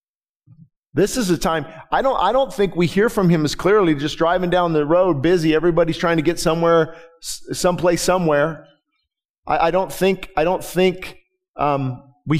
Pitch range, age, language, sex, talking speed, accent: 140-170 Hz, 40-59, English, male, 185 wpm, American